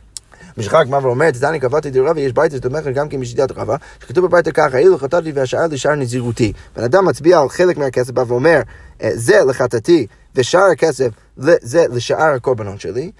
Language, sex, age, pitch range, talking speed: Hebrew, male, 30-49, 125-195 Hz, 110 wpm